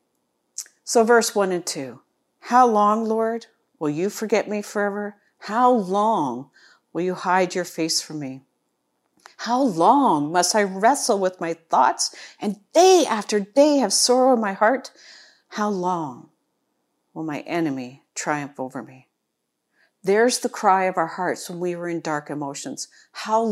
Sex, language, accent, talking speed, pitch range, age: female, English, American, 155 wpm, 170-220 Hz, 50-69